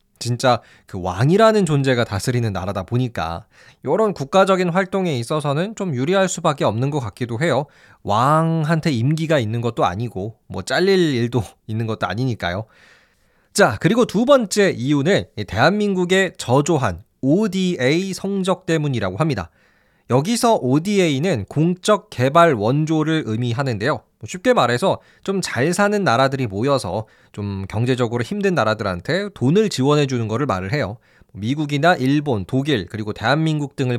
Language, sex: Korean, male